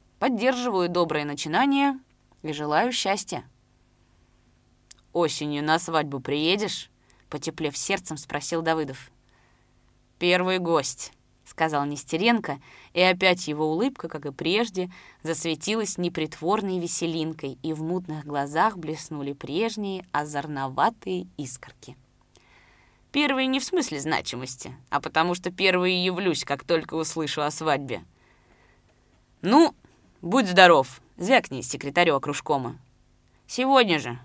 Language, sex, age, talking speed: Russian, female, 20-39, 105 wpm